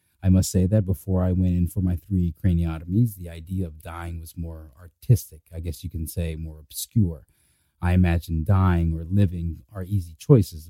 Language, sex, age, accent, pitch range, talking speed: English, male, 30-49, American, 85-100 Hz, 190 wpm